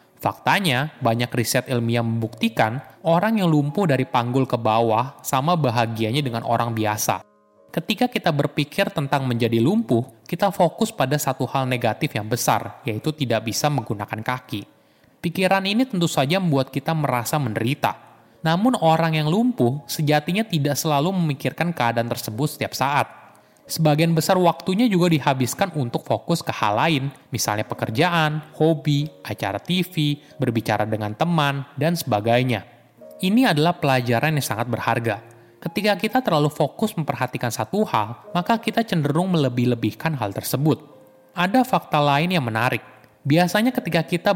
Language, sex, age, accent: Indonesian, male, 20-39, native